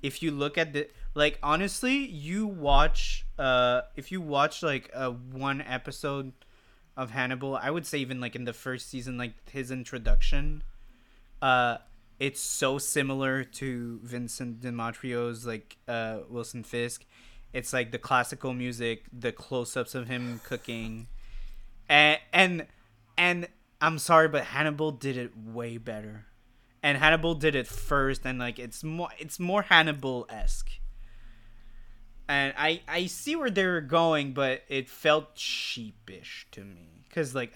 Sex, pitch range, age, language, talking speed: male, 120-145 Hz, 20-39, French, 145 wpm